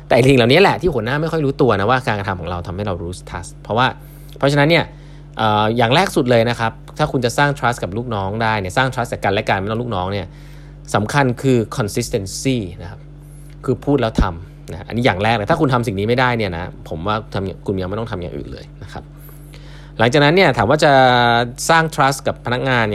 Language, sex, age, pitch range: Thai, male, 20-39, 105-145 Hz